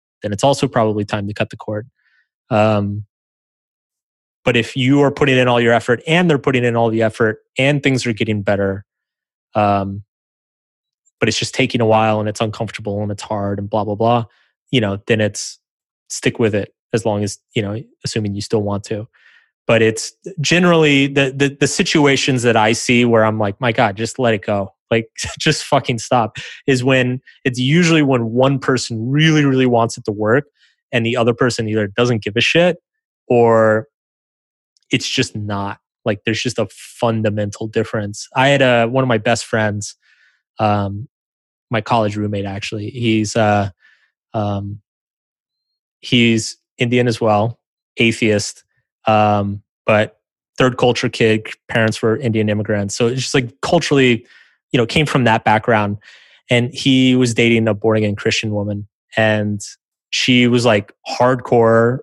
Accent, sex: American, male